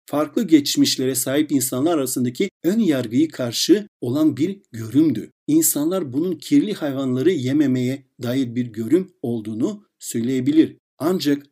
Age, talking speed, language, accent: 60-79, 115 wpm, Turkish, native